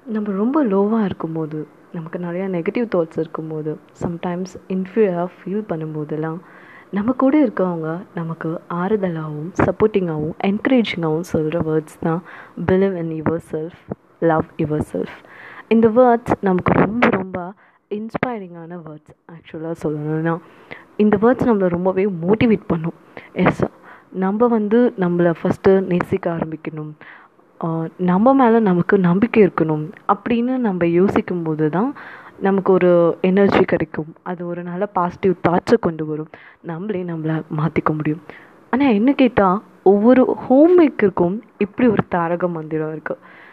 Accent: native